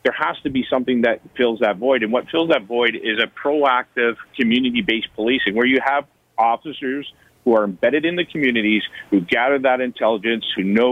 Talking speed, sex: 190 wpm, male